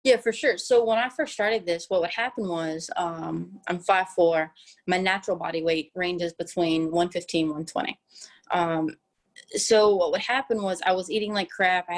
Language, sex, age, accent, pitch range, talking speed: English, female, 20-39, American, 170-195 Hz, 185 wpm